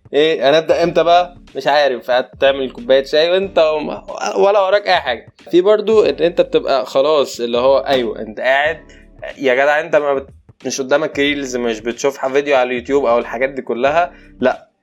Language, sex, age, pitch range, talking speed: Arabic, male, 20-39, 130-180 Hz, 175 wpm